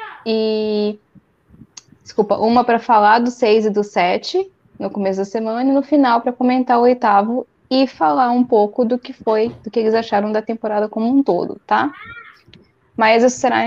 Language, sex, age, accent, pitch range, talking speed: Portuguese, female, 10-29, Brazilian, 200-240 Hz, 180 wpm